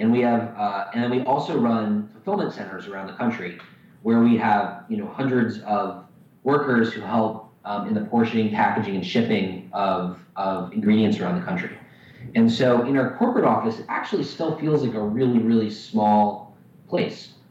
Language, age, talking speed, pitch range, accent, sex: English, 20-39, 180 wpm, 105-130 Hz, American, male